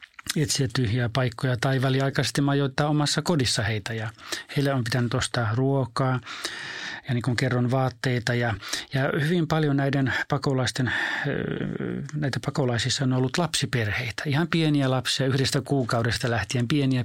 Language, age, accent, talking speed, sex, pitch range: Finnish, 30-49, native, 130 wpm, male, 115-140 Hz